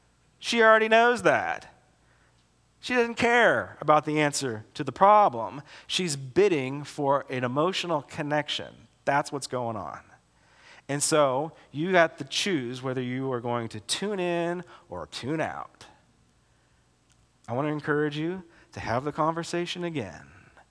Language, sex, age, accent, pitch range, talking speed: English, male, 40-59, American, 120-160 Hz, 140 wpm